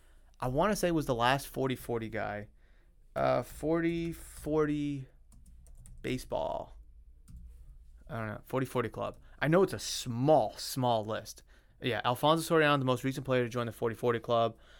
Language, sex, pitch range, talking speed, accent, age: English, male, 110-140 Hz, 165 wpm, American, 30-49